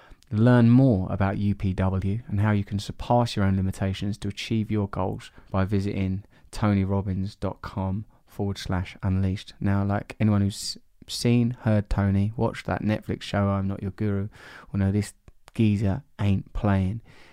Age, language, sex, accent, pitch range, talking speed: 20-39, English, male, British, 100-110 Hz, 150 wpm